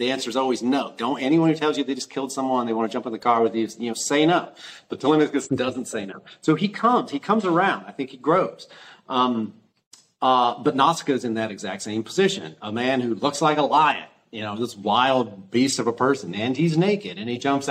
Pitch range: 115-135 Hz